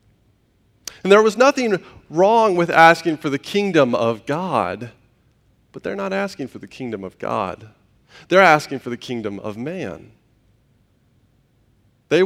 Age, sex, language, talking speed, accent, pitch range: 30-49, male, English, 140 wpm, American, 120-185 Hz